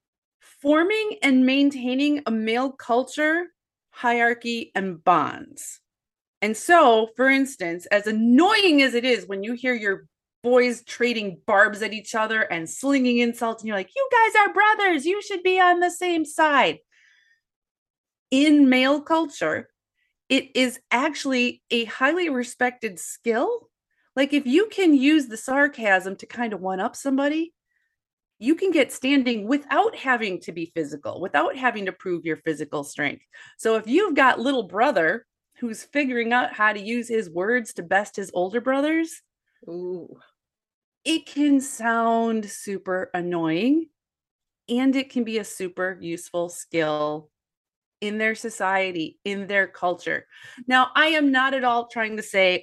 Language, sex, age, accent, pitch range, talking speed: English, female, 30-49, American, 195-275 Hz, 150 wpm